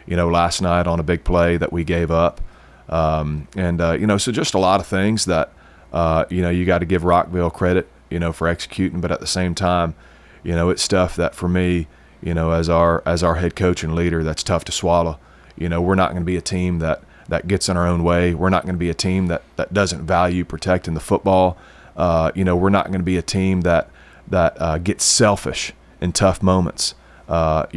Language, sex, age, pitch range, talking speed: English, male, 30-49, 80-90 Hz, 240 wpm